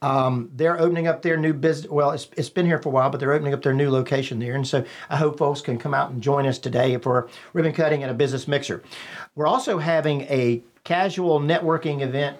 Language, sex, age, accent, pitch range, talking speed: English, male, 50-69, American, 125-155 Hz, 235 wpm